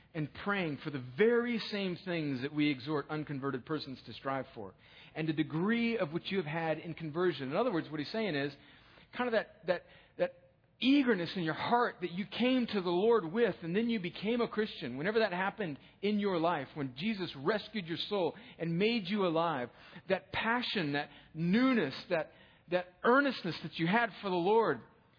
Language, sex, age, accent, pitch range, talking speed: English, male, 40-59, American, 160-230 Hz, 195 wpm